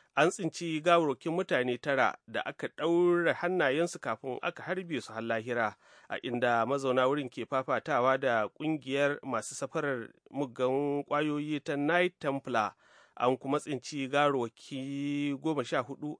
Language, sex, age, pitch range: English, male, 30-49, 135-190 Hz